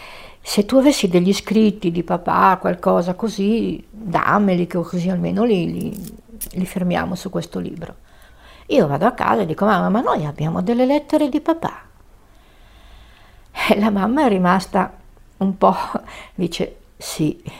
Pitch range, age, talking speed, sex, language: 180-220 Hz, 60-79, 145 wpm, female, Italian